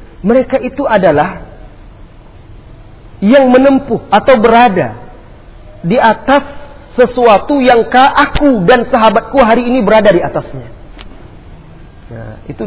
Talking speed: 100 wpm